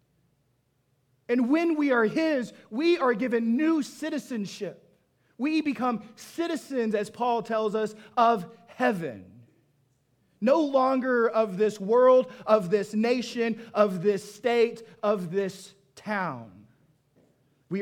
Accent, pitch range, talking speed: American, 135-210 Hz, 115 wpm